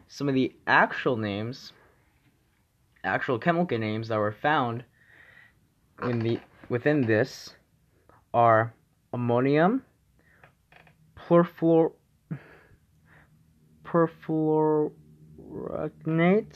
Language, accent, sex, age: English, American, male, 20-39